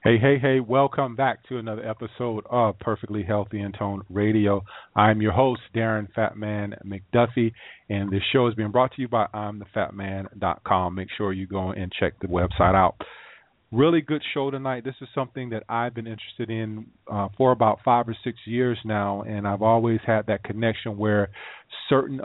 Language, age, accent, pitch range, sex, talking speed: English, 40-59, American, 105-115 Hz, male, 180 wpm